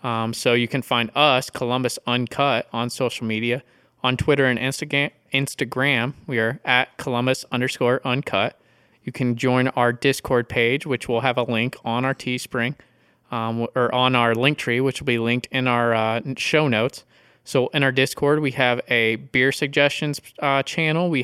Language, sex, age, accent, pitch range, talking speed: English, male, 20-39, American, 120-140 Hz, 170 wpm